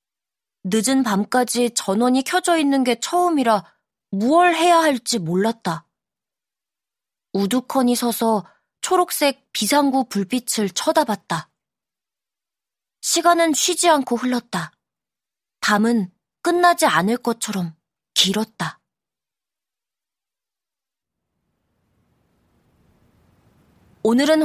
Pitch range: 200-290 Hz